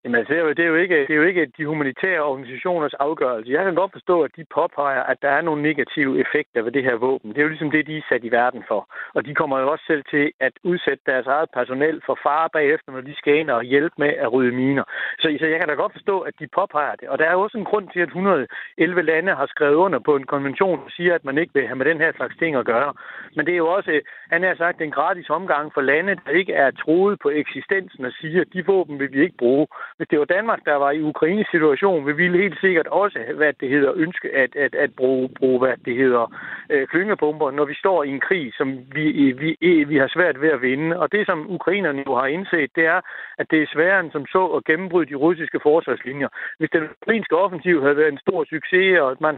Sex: male